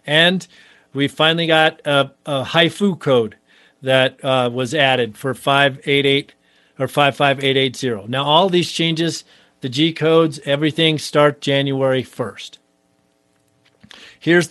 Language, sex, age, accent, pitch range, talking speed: English, male, 50-69, American, 130-160 Hz, 115 wpm